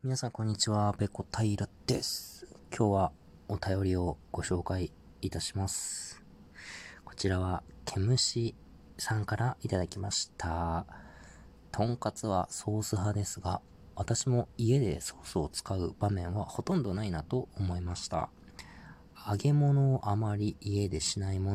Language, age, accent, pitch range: Japanese, 20-39, native, 85-105 Hz